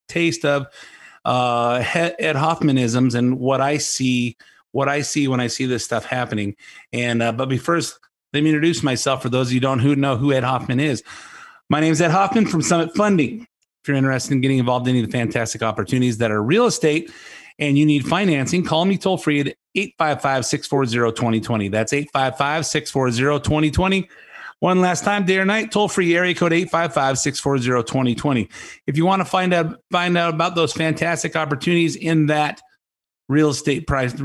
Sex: male